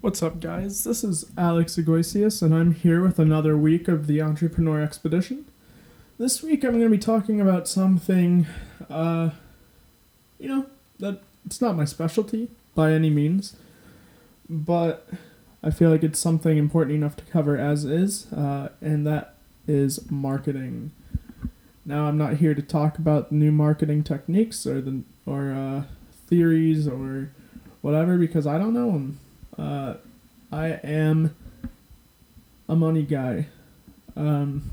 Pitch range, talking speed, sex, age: 150-180 Hz, 145 wpm, male, 20-39